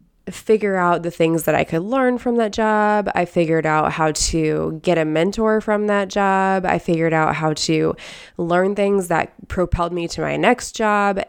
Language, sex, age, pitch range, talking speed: English, female, 20-39, 165-200 Hz, 190 wpm